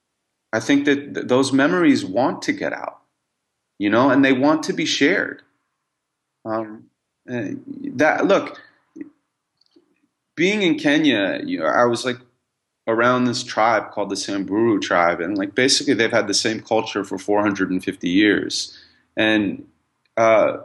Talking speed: 140 wpm